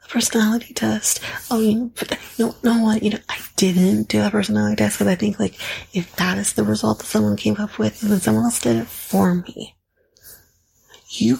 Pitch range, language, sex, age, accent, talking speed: 175-215 Hz, English, female, 30-49, American, 205 wpm